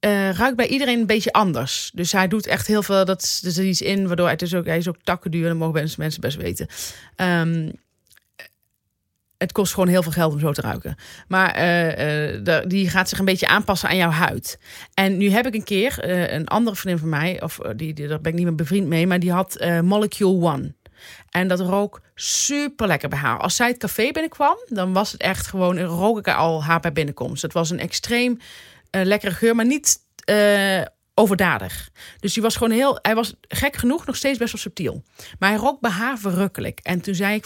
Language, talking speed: Dutch, 220 wpm